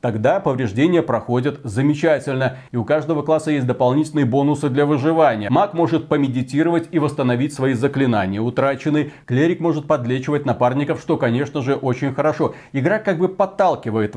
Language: Russian